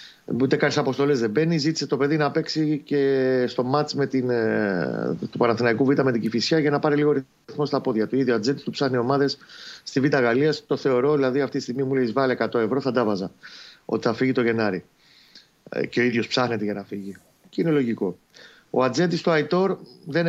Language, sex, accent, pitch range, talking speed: Greek, male, native, 120-170 Hz, 205 wpm